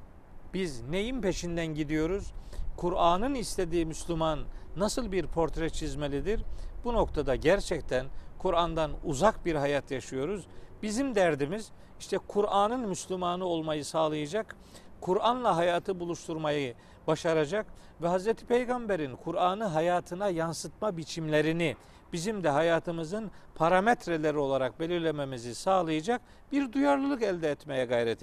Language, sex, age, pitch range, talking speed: Turkish, male, 50-69, 155-200 Hz, 105 wpm